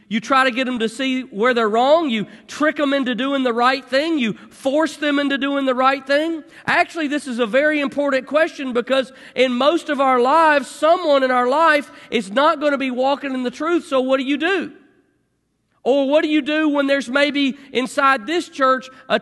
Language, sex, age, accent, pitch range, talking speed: English, male, 40-59, American, 250-300 Hz, 215 wpm